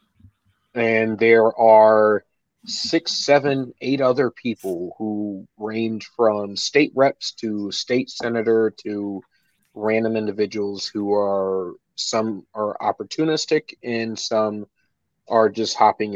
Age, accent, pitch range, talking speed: 30-49, American, 100-120 Hz, 110 wpm